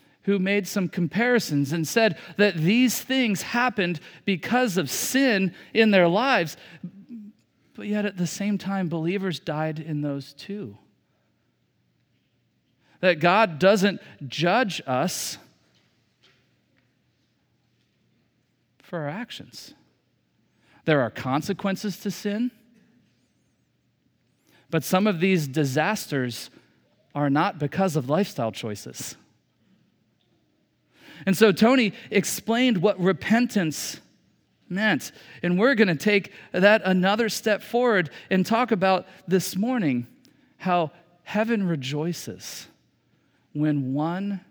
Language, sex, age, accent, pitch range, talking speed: English, male, 40-59, American, 140-205 Hz, 105 wpm